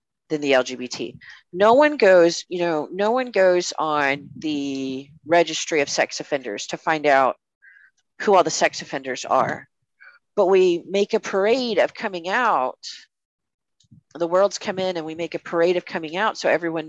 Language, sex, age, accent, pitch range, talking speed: English, female, 40-59, American, 150-195 Hz, 170 wpm